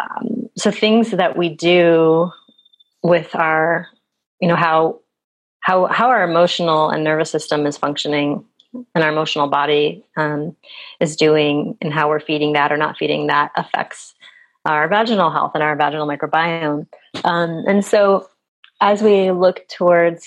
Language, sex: English, female